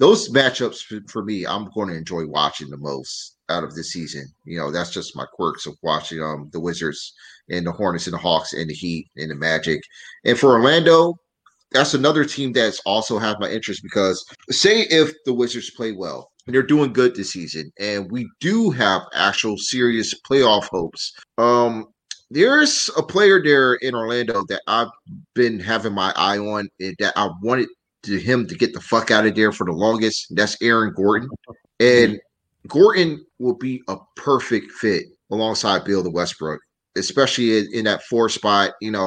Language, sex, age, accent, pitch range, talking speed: English, male, 30-49, American, 100-130 Hz, 190 wpm